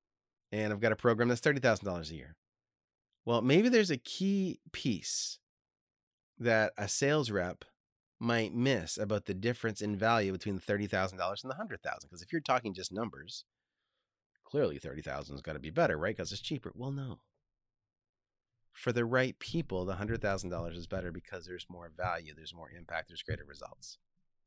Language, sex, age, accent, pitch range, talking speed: English, male, 30-49, American, 95-115 Hz, 165 wpm